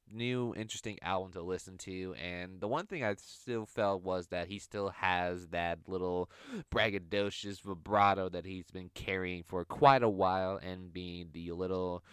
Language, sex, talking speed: English, male, 170 wpm